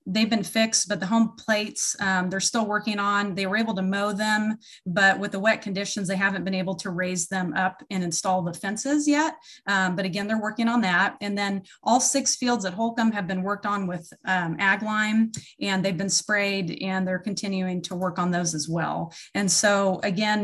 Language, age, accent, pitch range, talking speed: English, 30-49, American, 185-210 Hz, 215 wpm